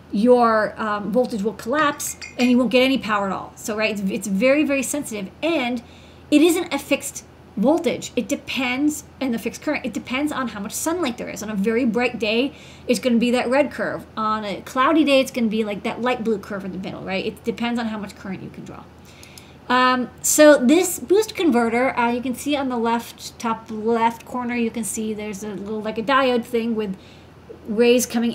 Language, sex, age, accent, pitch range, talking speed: English, female, 30-49, American, 220-265 Hz, 225 wpm